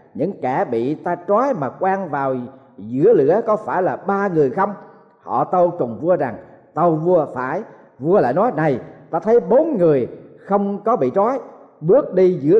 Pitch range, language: 150-205 Hz, Thai